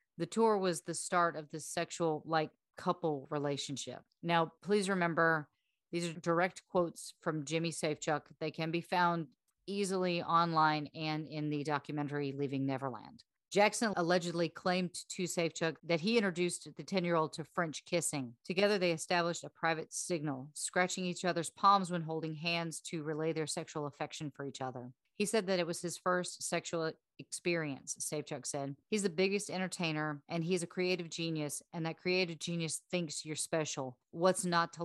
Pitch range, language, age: 155-180 Hz, English, 40-59